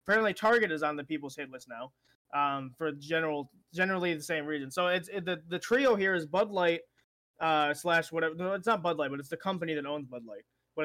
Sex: male